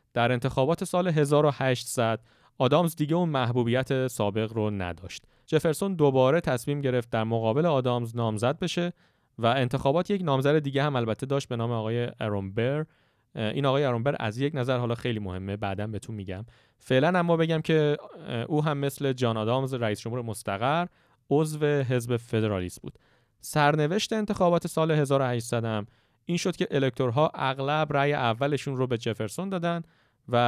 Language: Persian